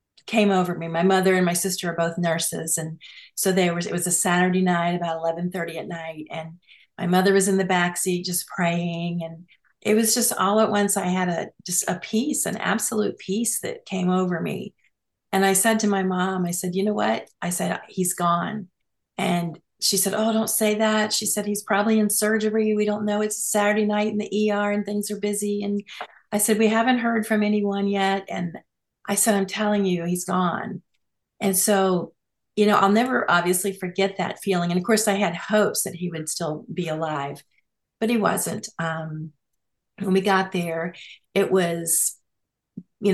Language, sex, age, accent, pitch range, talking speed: English, female, 40-59, American, 175-210 Hz, 200 wpm